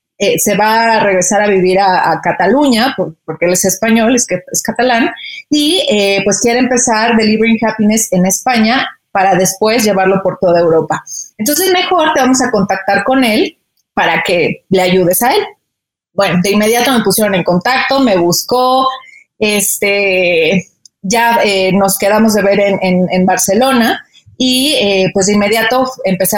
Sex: female